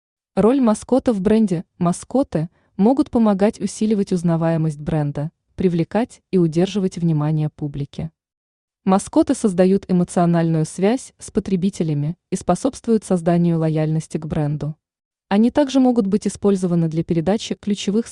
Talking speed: 115 wpm